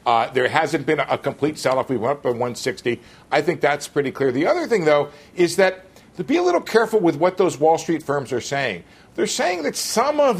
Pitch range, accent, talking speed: 140-185 Hz, American, 235 wpm